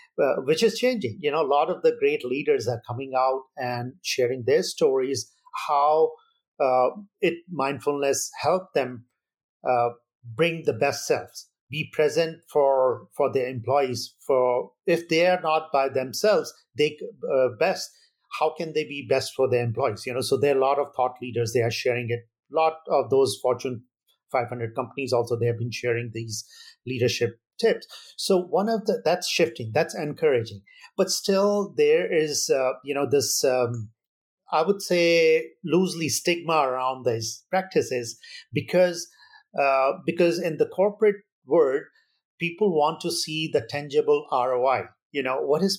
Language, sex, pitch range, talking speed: English, male, 130-200 Hz, 165 wpm